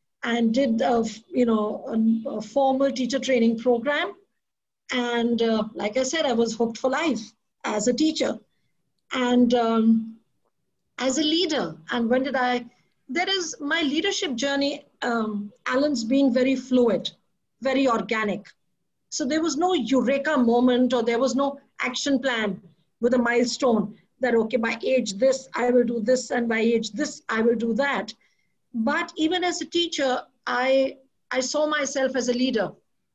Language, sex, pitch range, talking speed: English, female, 235-295 Hz, 155 wpm